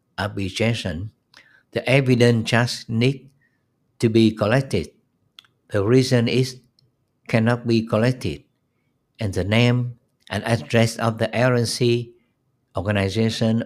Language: Vietnamese